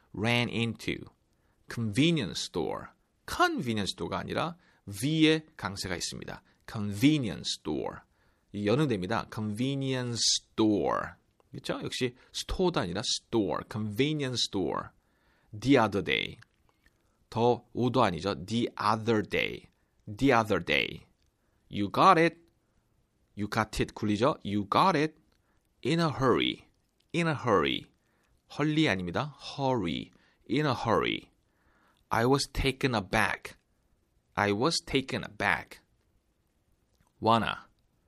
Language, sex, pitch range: Korean, male, 105-140 Hz